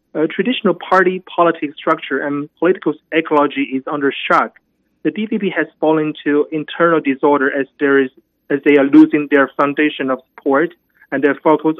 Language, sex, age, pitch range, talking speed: English, male, 30-49, 145-160 Hz, 165 wpm